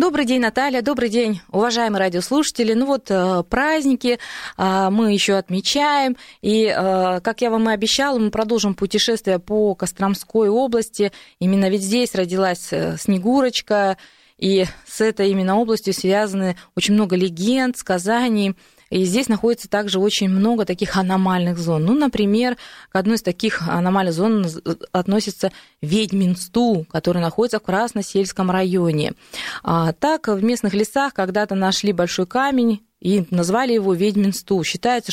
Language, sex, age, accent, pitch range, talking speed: Russian, female, 20-39, native, 185-230 Hz, 135 wpm